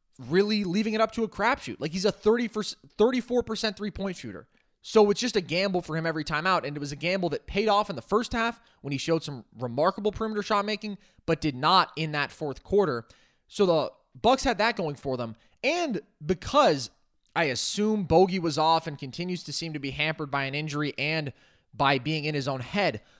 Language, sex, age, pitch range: English, male, 20-39, 150-215 Hz